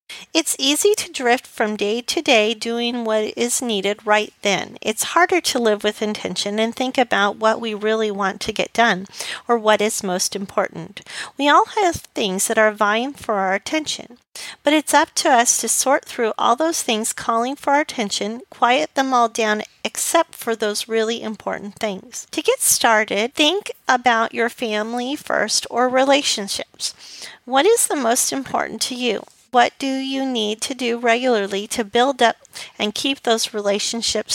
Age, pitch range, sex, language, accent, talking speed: 40-59, 215-270 Hz, female, English, American, 175 wpm